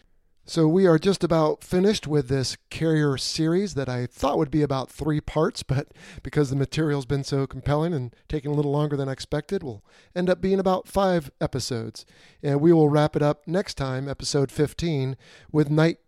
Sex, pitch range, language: male, 130-160 Hz, English